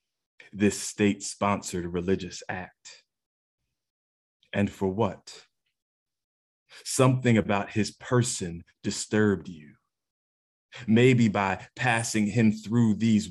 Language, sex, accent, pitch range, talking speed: English, male, American, 85-100 Hz, 85 wpm